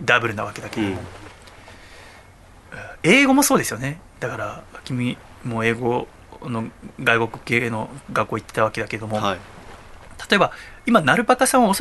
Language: Japanese